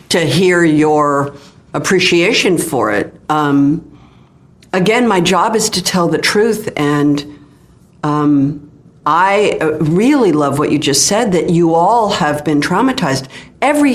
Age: 50-69